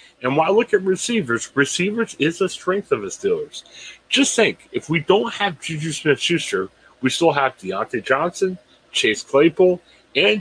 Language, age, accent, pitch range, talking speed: English, 40-59, American, 135-190 Hz, 160 wpm